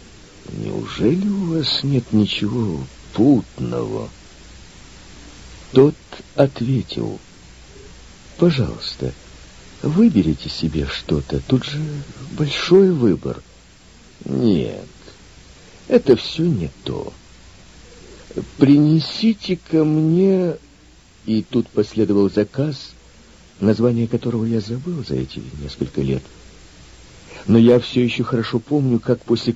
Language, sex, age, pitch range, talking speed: Russian, male, 50-69, 95-145 Hz, 90 wpm